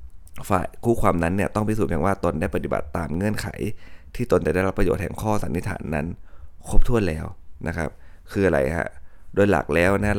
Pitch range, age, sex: 80-100 Hz, 20-39, male